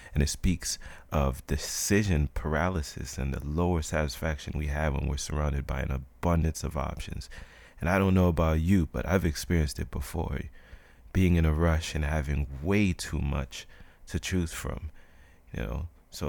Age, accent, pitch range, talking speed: 30-49, American, 70-85 Hz, 170 wpm